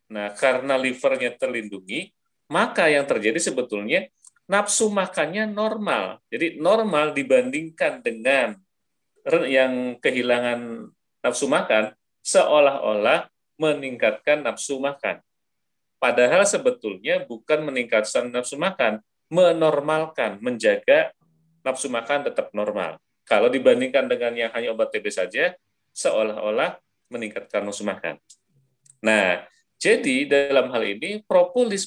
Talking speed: 100 wpm